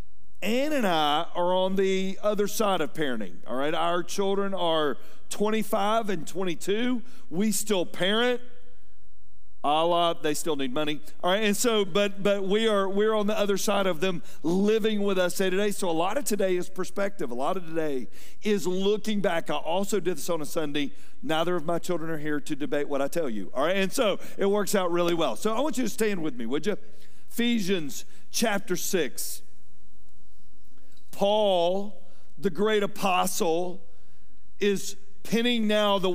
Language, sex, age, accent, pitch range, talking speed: English, male, 50-69, American, 170-210 Hz, 180 wpm